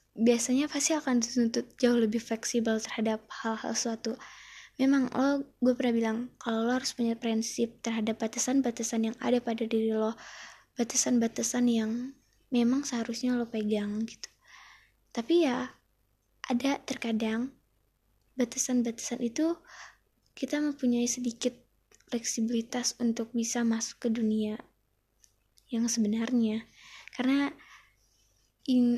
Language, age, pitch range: Indonesian, 20-39, 225-255 Hz